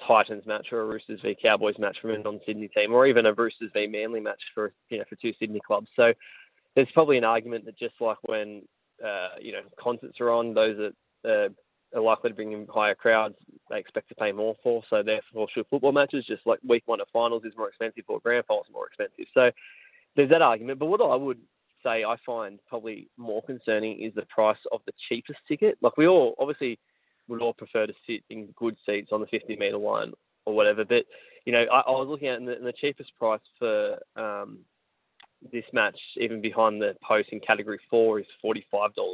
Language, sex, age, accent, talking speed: English, male, 20-39, Australian, 215 wpm